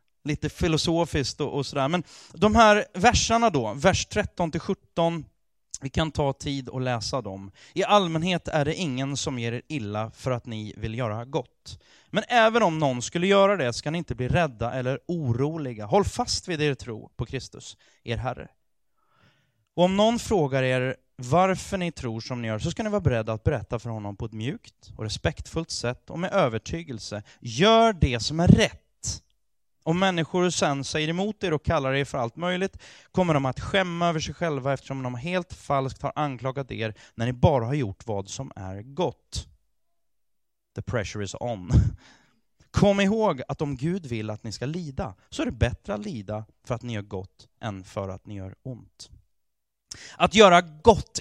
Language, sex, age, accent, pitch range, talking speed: Swedish, male, 30-49, native, 115-175 Hz, 185 wpm